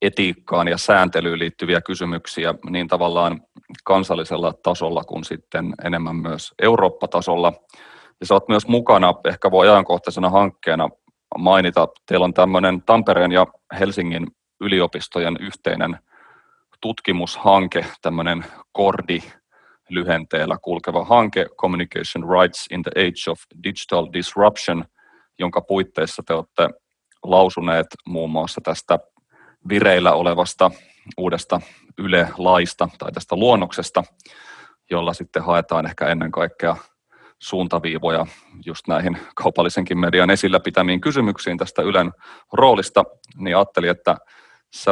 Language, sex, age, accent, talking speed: Finnish, male, 30-49, native, 110 wpm